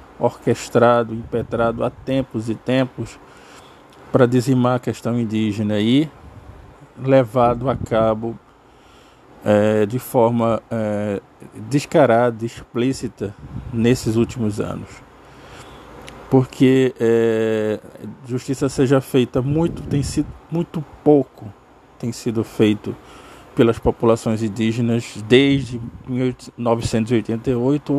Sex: male